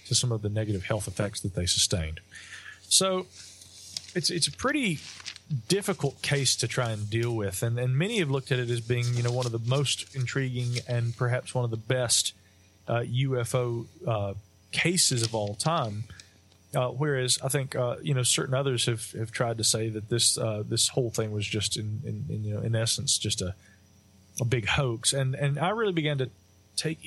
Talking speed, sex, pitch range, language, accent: 205 wpm, male, 110-135 Hz, English, American